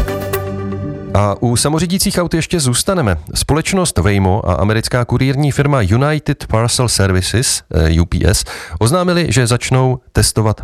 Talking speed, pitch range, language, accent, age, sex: 115 wpm, 95-125 Hz, Czech, native, 40-59, male